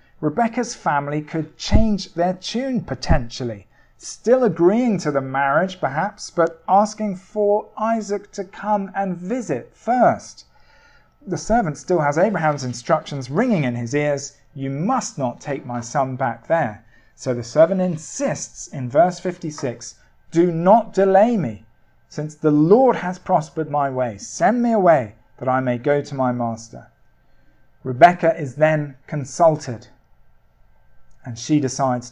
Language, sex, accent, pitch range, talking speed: English, male, British, 130-175 Hz, 140 wpm